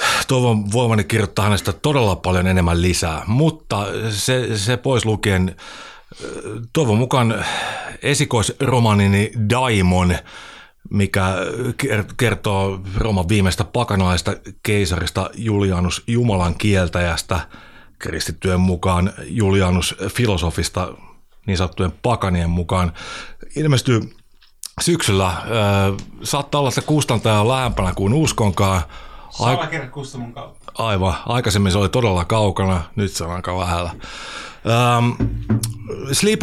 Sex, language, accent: male, Finnish, native